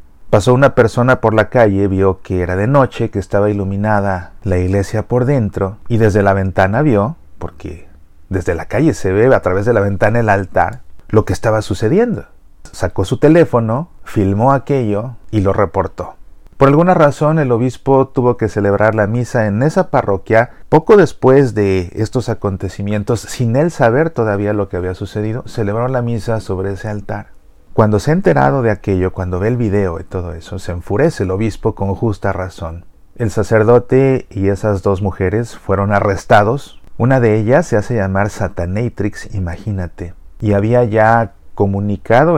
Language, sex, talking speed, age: Spanish, male, 170 wpm, 40-59